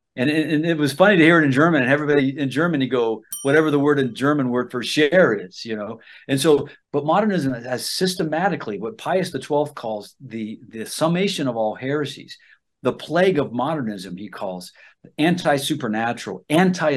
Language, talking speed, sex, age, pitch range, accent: English, 180 wpm, male, 50-69, 120-150 Hz, American